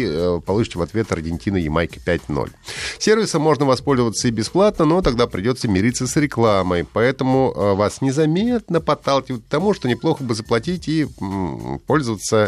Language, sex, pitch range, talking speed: Russian, male, 95-150 Hz, 140 wpm